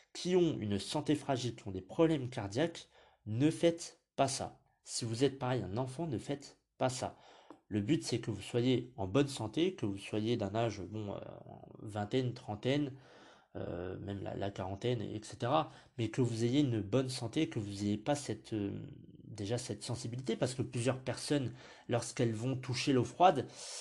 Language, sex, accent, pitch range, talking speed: French, male, French, 110-140 Hz, 185 wpm